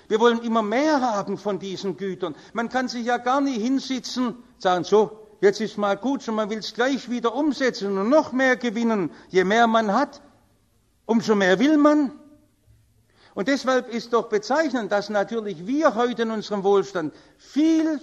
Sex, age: male, 60-79